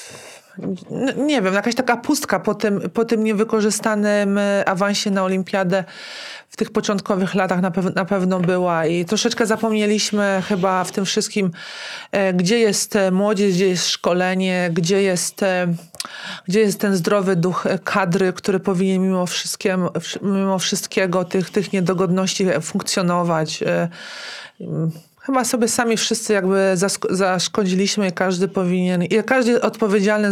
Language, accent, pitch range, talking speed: Polish, native, 190-215 Hz, 120 wpm